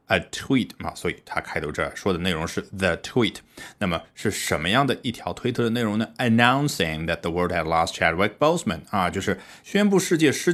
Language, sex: Chinese, male